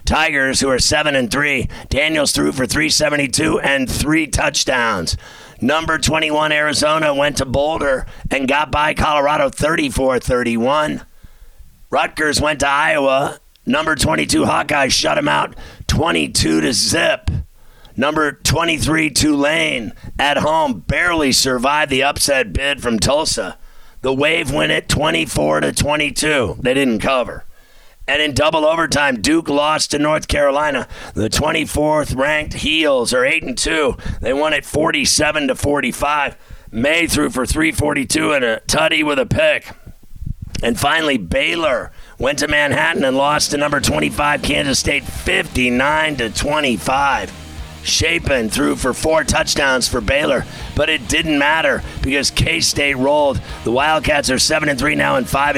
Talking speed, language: 130 wpm, English